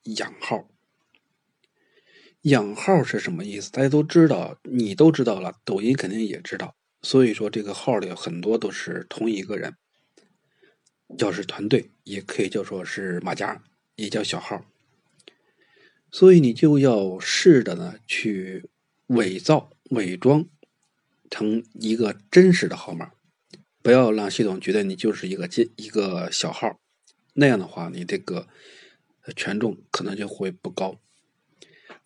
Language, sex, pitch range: Chinese, male, 110-160 Hz